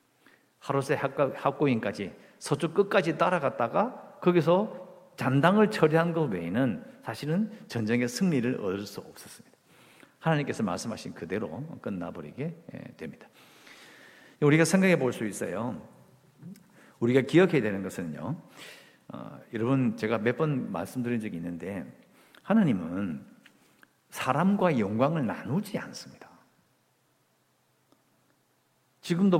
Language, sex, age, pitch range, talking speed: English, male, 50-69, 125-185 Hz, 85 wpm